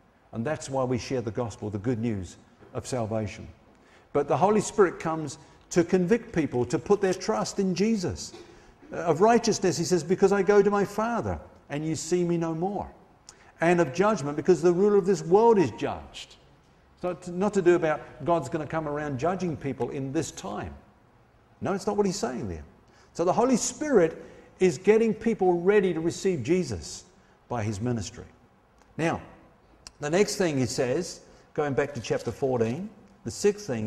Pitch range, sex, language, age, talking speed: 125-195 Hz, male, English, 50-69, 185 wpm